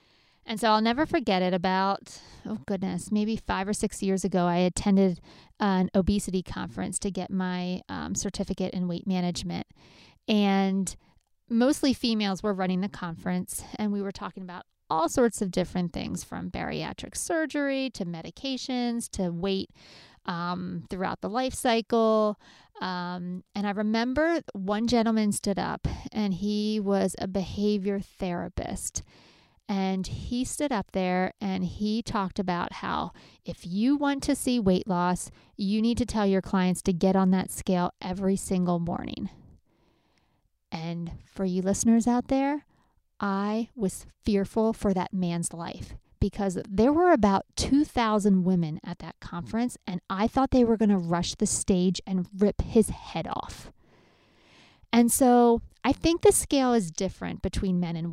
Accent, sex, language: American, female, English